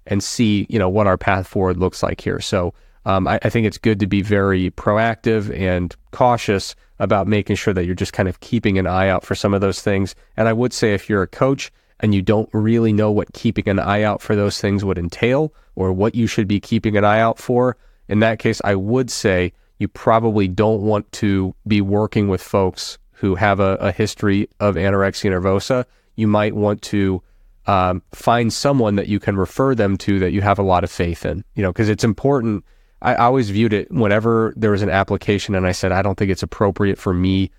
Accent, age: American, 30-49